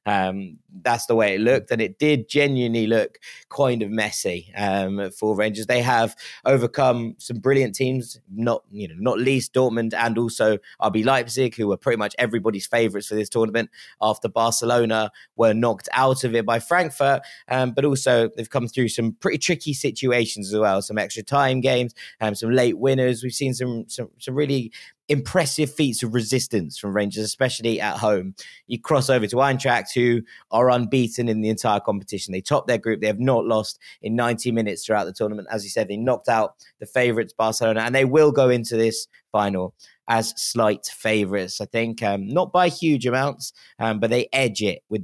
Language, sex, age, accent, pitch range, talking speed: English, male, 20-39, British, 110-130 Hz, 190 wpm